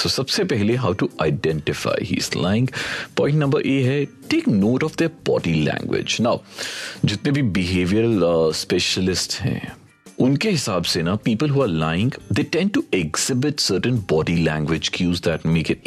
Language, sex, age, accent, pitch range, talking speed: Hindi, male, 40-59, native, 85-130 Hz, 140 wpm